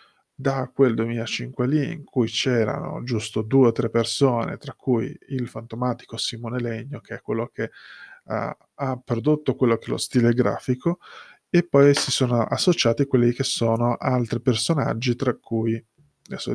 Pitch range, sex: 115-135 Hz, male